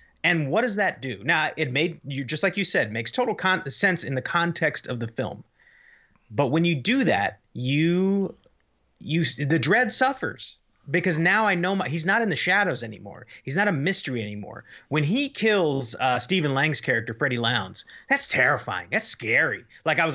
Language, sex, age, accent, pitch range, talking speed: English, male, 30-49, American, 130-175 Hz, 195 wpm